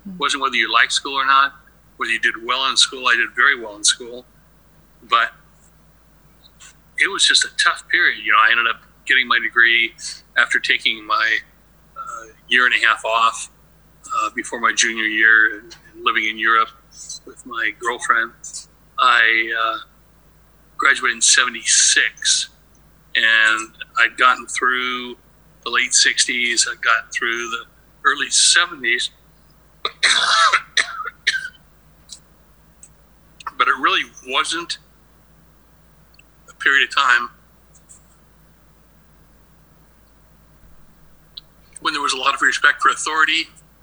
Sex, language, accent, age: male, English, American, 60-79